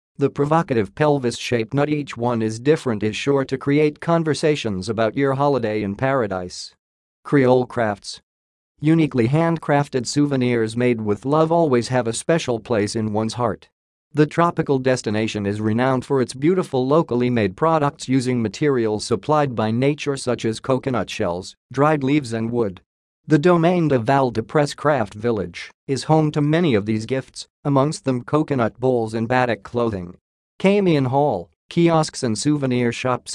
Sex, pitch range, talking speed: male, 110-145 Hz, 155 wpm